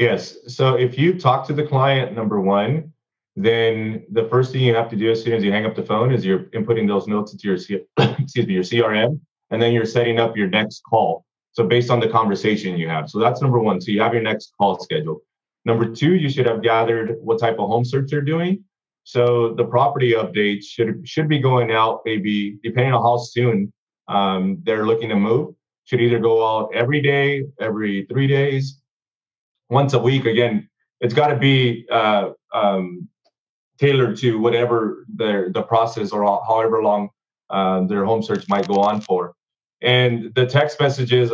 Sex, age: male, 30-49